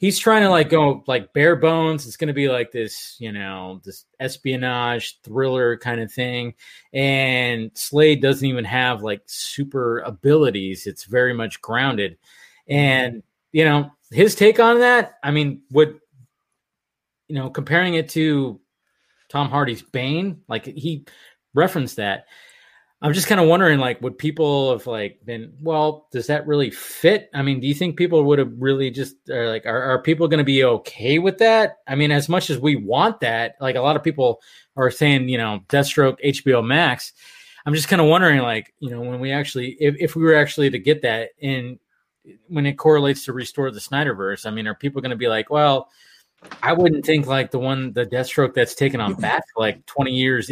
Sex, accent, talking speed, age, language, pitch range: male, American, 195 wpm, 20-39, English, 125-155 Hz